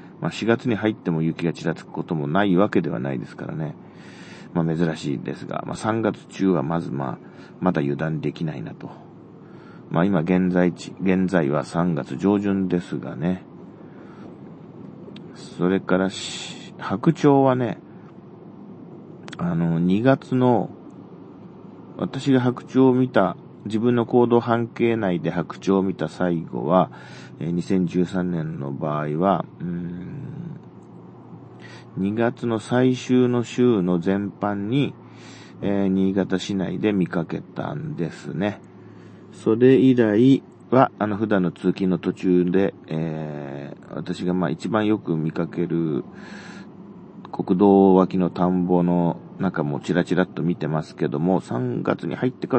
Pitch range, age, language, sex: 85-120 Hz, 40-59, Japanese, male